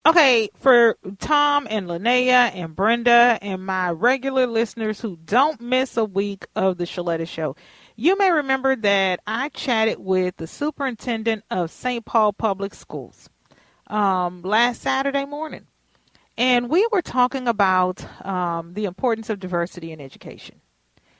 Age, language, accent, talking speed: 40-59, English, American, 140 wpm